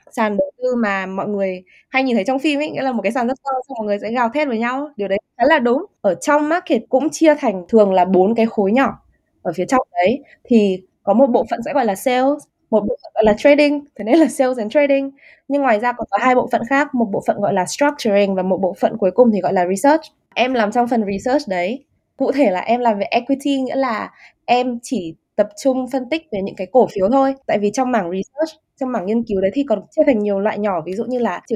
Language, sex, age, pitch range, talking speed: Vietnamese, female, 20-39, 205-265 Hz, 270 wpm